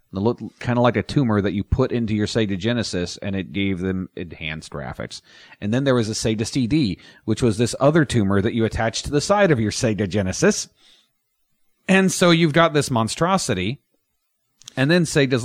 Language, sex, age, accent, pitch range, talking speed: English, male, 40-59, American, 95-125 Hz, 200 wpm